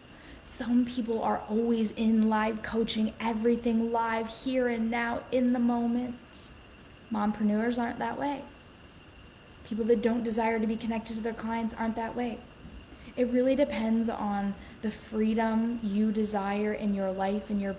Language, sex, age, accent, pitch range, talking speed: English, female, 10-29, American, 195-225 Hz, 150 wpm